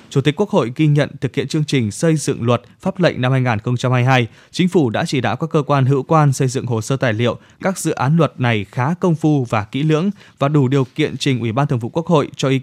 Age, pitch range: 20-39, 120-155 Hz